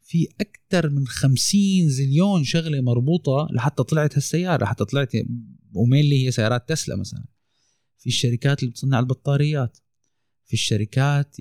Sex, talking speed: male, 130 wpm